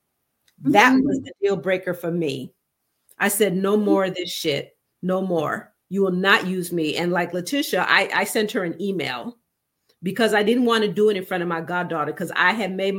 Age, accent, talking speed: 40-59, American, 215 wpm